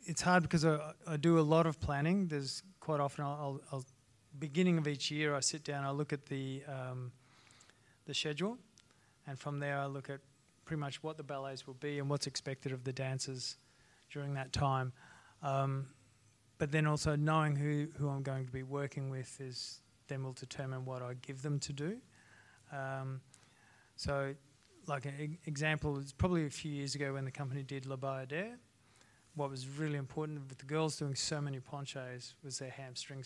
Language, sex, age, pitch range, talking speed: English, male, 20-39, 130-150 Hz, 190 wpm